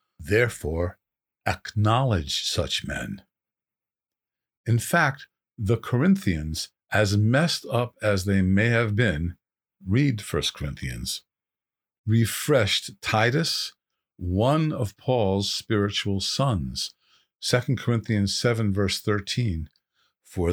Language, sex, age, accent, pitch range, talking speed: English, male, 50-69, American, 90-120 Hz, 95 wpm